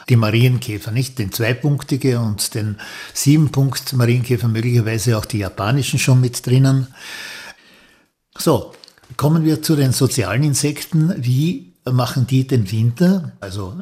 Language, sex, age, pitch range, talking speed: German, male, 60-79, 120-140 Hz, 125 wpm